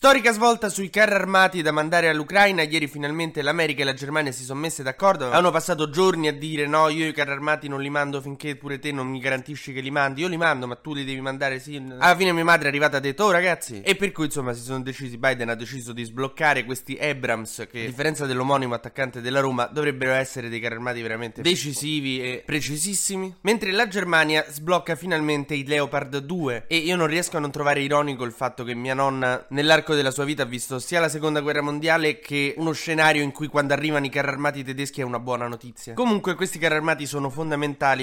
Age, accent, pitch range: 20-39, native, 135-165 Hz